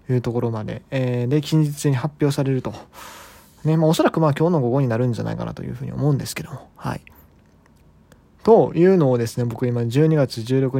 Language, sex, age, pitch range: Japanese, male, 20-39, 125-170 Hz